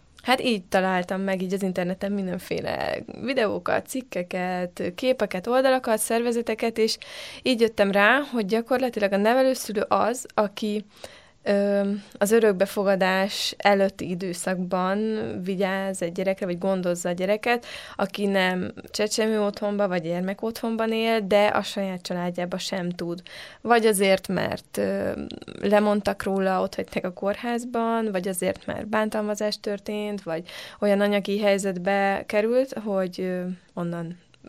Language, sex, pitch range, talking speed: Hungarian, female, 185-215 Hz, 120 wpm